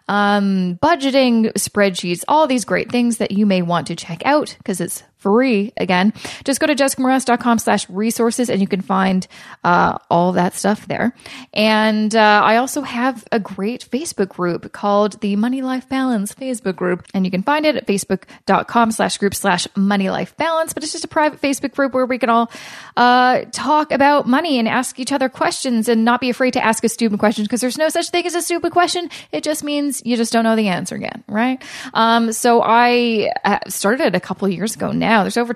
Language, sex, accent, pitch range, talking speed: English, female, American, 205-255 Hz, 205 wpm